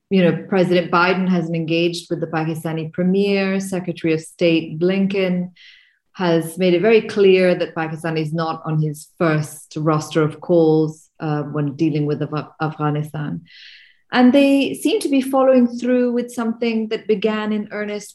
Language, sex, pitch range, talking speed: English, female, 165-225 Hz, 155 wpm